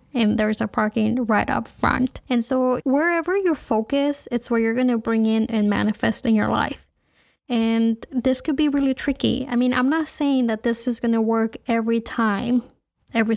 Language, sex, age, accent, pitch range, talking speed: English, female, 20-39, American, 225-255 Hz, 200 wpm